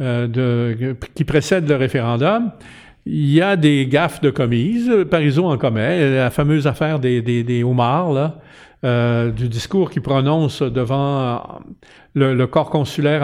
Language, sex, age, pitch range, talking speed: French, male, 50-69, 130-180 Hz, 145 wpm